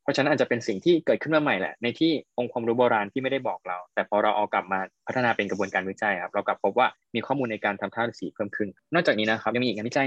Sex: male